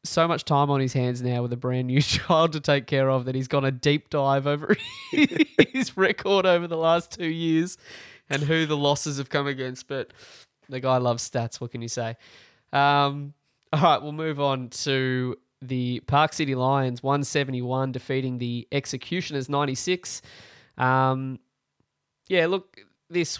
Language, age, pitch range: English, 20-39, 125-150 Hz